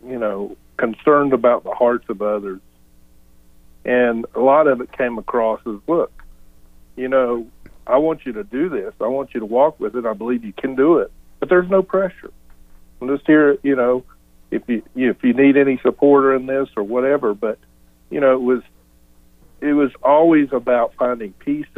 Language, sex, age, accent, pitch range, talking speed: English, male, 50-69, American, 95-140 Hz, 195 wpm